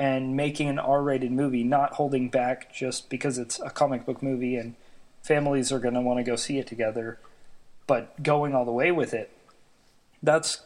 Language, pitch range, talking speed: English, 120-135 Hz, 190 wpm